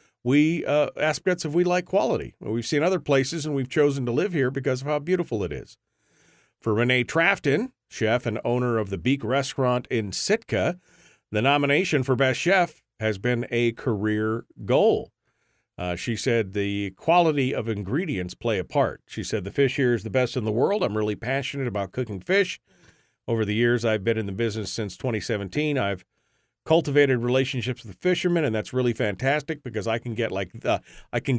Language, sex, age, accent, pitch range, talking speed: English, male, 40-59, American, 110-135 Hz, 190 wpm